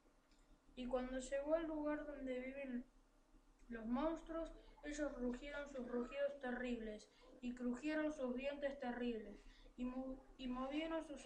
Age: 20-39